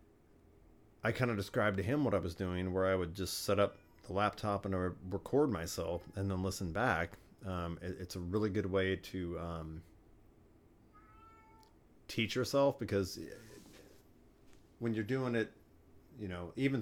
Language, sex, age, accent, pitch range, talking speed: English, male, 30-49, American, 85-110 Hz, 160 wpm